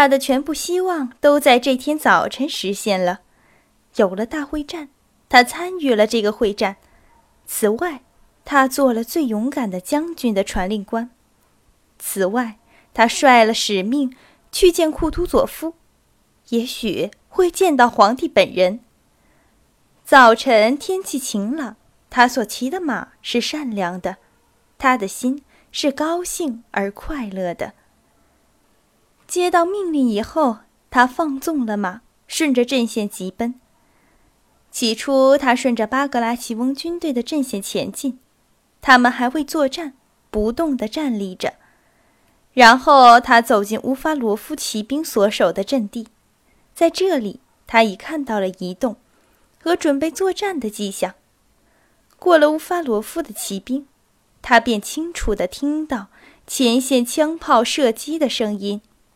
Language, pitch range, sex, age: Chinese, 225-300 Hz, female, 20-39